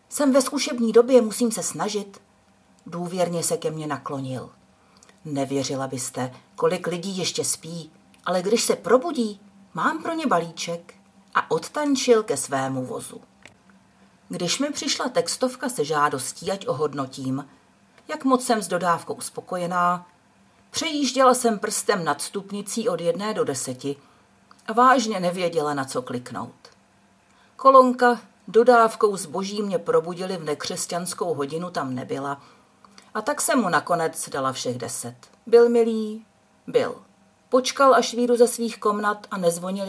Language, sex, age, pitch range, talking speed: Czech, female, 50-69, 170-240 Hz, 135 wpm